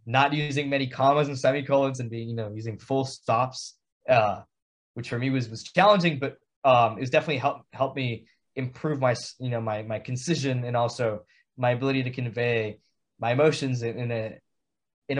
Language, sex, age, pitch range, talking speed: English, male, 20-39, 120-150 Hz, 180 wpm